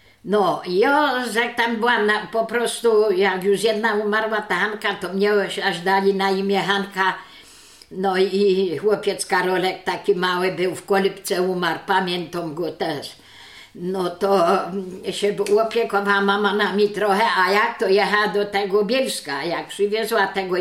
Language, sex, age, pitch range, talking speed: Polish, female, 50-69, 195-225 Hz, 150 wpm